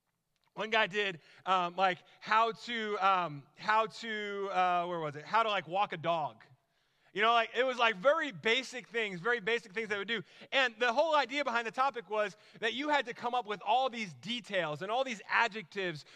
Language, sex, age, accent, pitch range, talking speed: English, male, 30-49, American, 175-220 Hz, 210 wpm